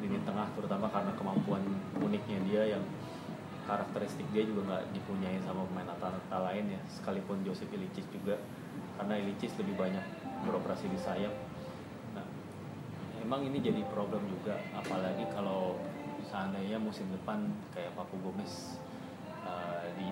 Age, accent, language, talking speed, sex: 20-39, native, Indonesian, 130 wpm, male